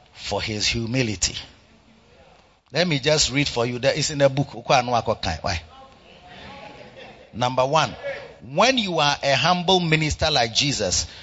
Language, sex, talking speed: English, male, 130 wpm